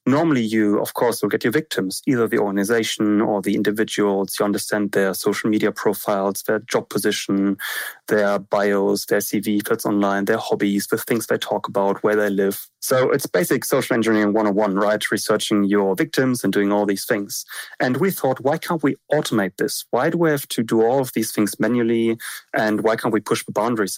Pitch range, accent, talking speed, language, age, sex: 100-115 Hz, German, 200 wpm, English, 30-49, male